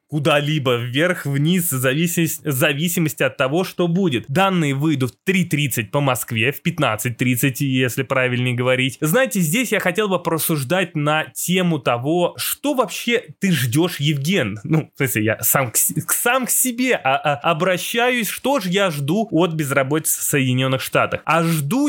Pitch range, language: 140-190 Hz, Russian